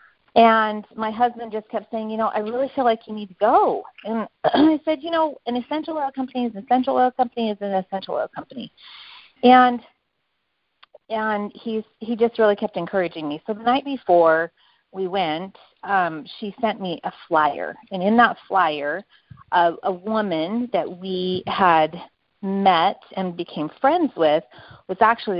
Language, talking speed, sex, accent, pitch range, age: English, 175 wpm, female, American, 180-240 Hz, 40-59